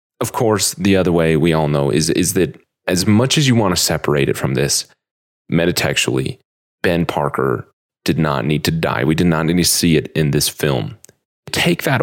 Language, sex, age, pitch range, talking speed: English, male, 30-49, 80-110 Hz, 205 wpm